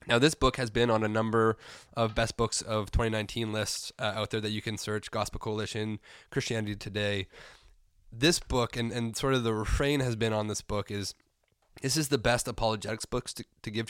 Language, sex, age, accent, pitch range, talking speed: English, male, 20-39, American, 110-130 Hz, 205 wpm